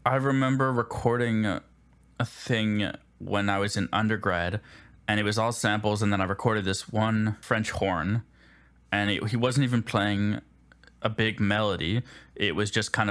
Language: English